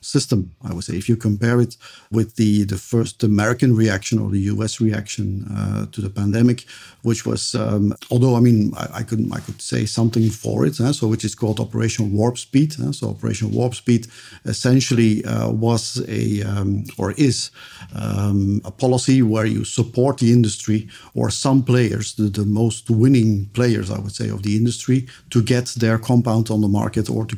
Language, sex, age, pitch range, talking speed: English, male, 50-69, 110-125 Hz, 195 wpm